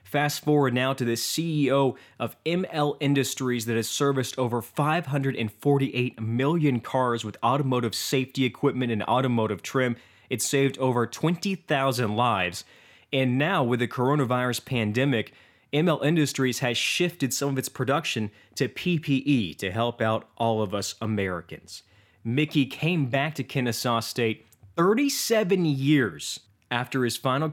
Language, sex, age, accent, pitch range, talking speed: English, male, 20-39, American, 110-140 Hz, 135 wpm